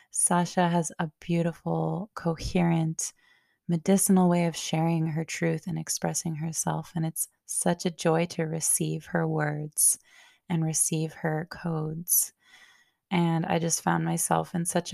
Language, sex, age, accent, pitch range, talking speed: English, female, 20-39, American, 155-175 Hz, 135 wpm